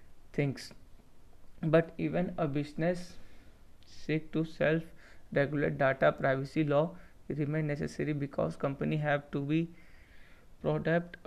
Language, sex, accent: English, male, Indian